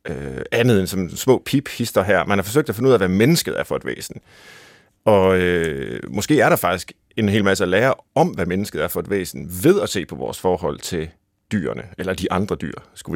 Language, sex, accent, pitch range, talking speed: Danish, male, native, 90-120 Hz, 235 wpm